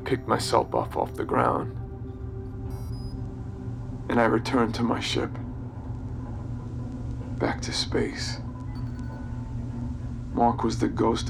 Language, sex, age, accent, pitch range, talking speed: English, male, 40-59, American, 115-120 Hz, 100 wpm